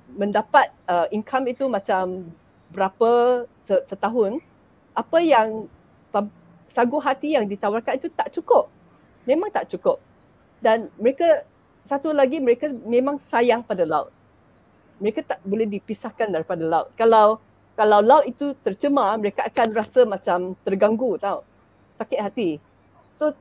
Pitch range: 200-280 Hz